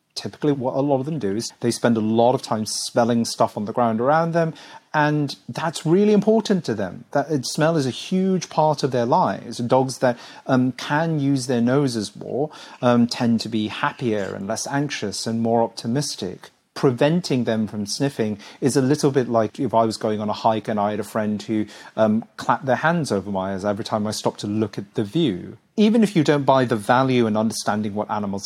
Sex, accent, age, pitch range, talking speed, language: male, British, 30-49, 110-140 Hz, 220 wpm, English